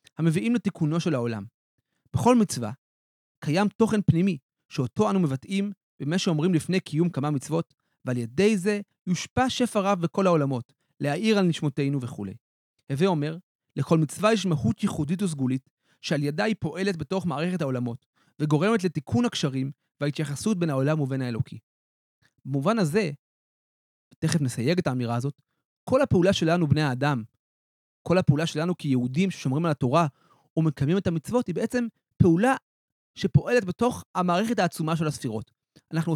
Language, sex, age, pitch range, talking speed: Hebrew, male, 30-49, 140-185 Hz, 140 wpm